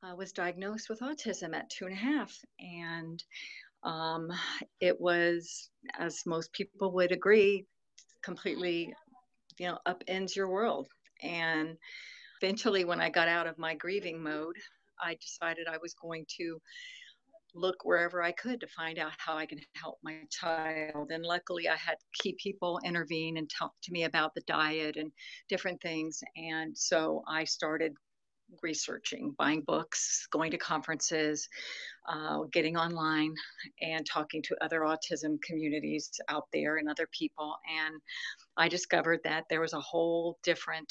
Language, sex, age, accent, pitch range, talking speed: English, female, 50-69, American, 160-180 Hz, 155 wpm